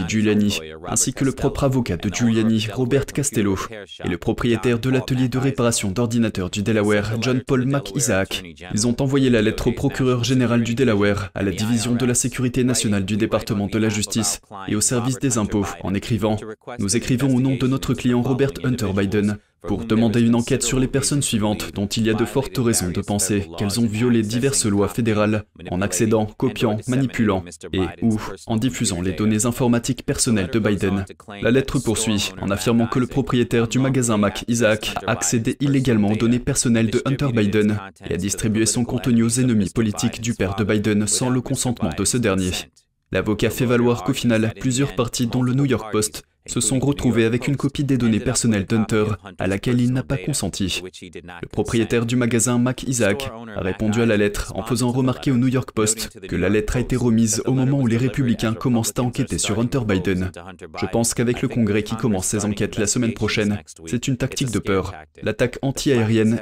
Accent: French